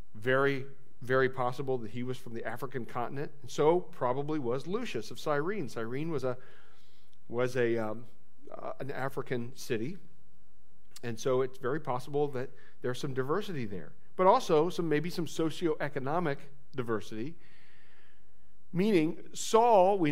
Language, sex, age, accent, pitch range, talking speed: English, male, 40-59, American, 125-165 Hz, 140 wpm